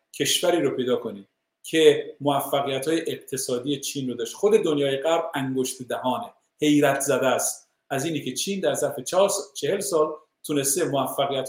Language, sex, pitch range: Persian, male, 140-215 Hz